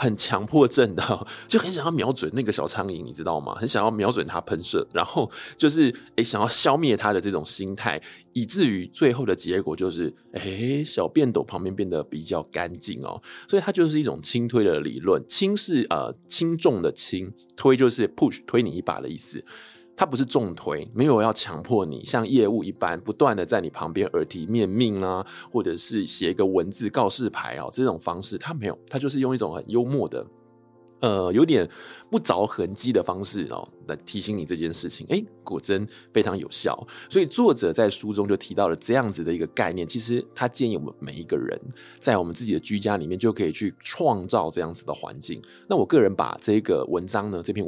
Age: 20-39